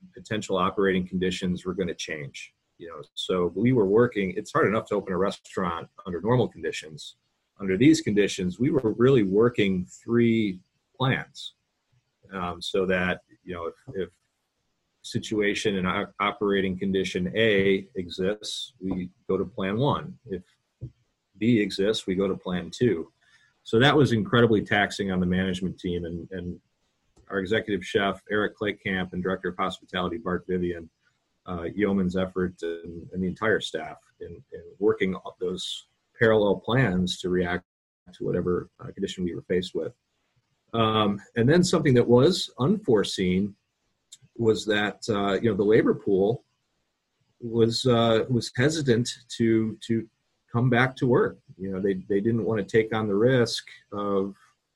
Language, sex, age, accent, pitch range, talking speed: English, male, 40-59, American, 90-115 Hz, 155 wpm